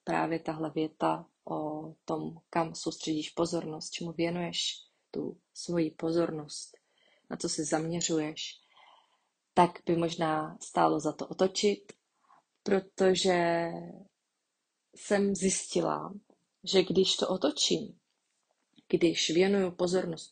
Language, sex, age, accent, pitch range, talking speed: Czech, female, 20-39, native, 165-190 Hz, 100 wpm